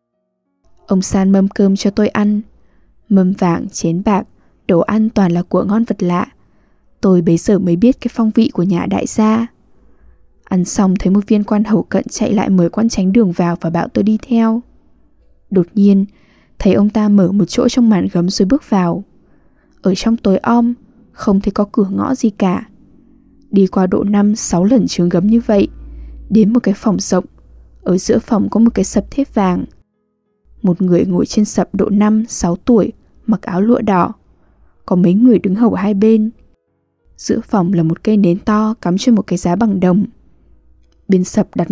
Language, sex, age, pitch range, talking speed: English, female, 10-29, 180-220 Hz, 195 wpm